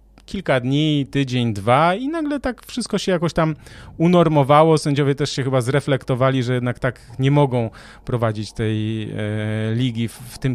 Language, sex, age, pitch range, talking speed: Polish, male, 30-49, 120-150 Hz, 165 wpm